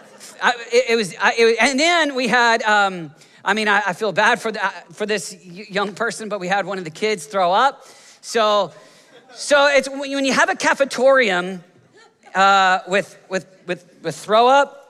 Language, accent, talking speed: English, American, 195 wpm